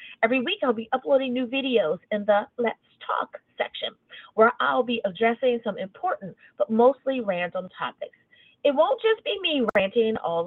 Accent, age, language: American, 30-49, English